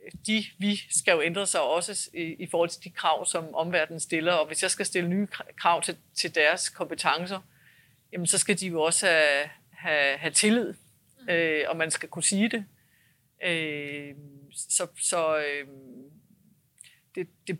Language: Danish